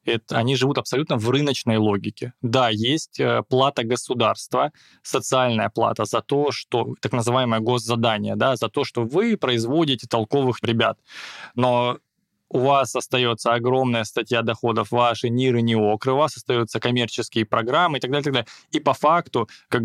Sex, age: male, 20-39